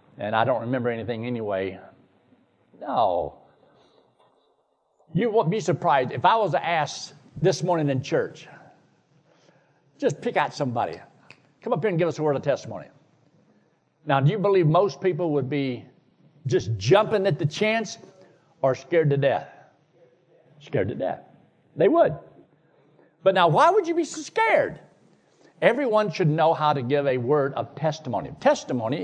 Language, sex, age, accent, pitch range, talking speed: English, male, 60-79, American, 135-190 Hz, 155 wpm